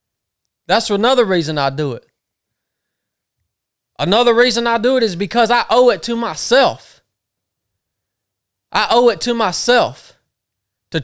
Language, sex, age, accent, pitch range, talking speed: English, male, 30-49, American, 165-260 Hz, 130 wpm